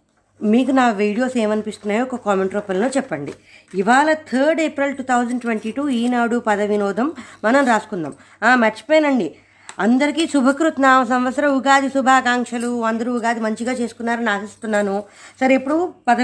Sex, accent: female, native